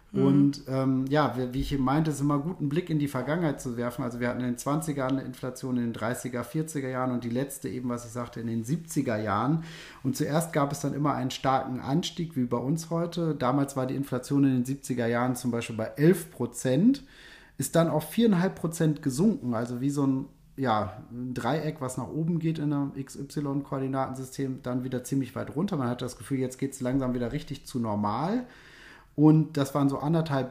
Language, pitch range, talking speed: German, 125-155 Hz, 210 wpm